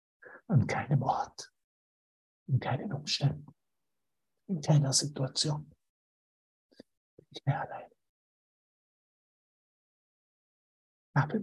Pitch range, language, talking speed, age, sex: 135-155 Hz, German, 75 wpm, 60-79, male